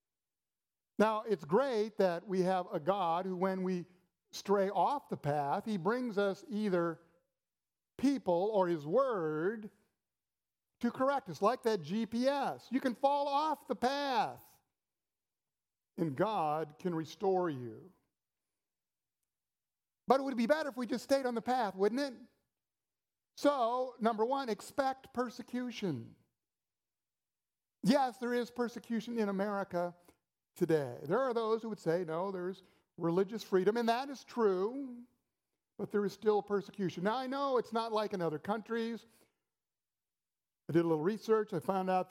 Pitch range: 175-230 Hz